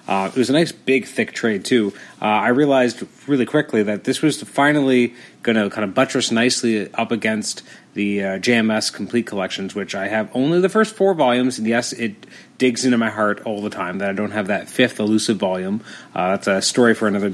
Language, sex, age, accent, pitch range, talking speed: English, male, 30-49, American, 105-125 Hz, 220 wpm